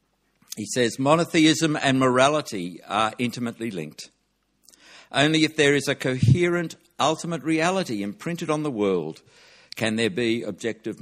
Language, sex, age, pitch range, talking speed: English, male, 60-79, 110-155 Hz, 130 wpm